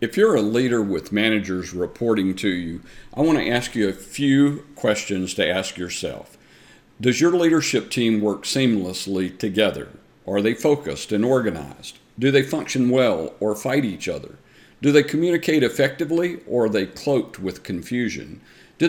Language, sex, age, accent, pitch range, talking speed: English, male, 50-69, American, 100-135 Hz, 160 wpm